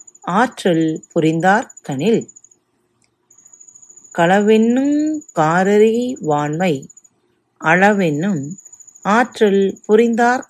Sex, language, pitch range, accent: female, Tamil, 170-260 Hz, native